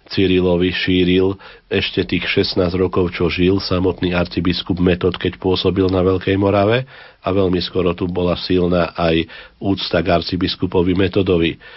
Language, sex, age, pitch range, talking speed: Slovak, male, 40-59, 90-100 Hz, 140 wpm